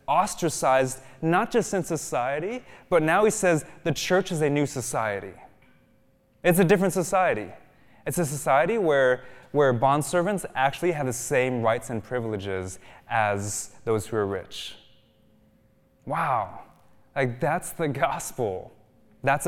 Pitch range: 105-140 Hz